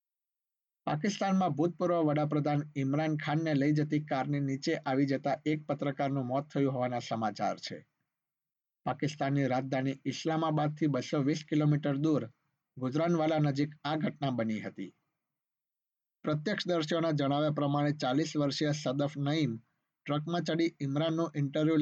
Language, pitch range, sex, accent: Gujarati, 135-155 Hz, male, native